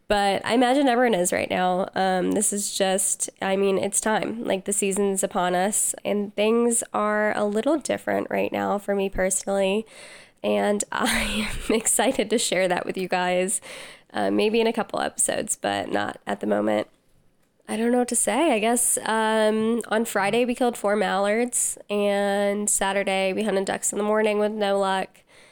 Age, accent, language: 10-29, American, English